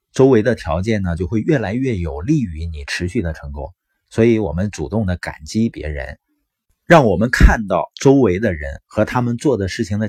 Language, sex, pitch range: Chinese, male, 85-130 Hz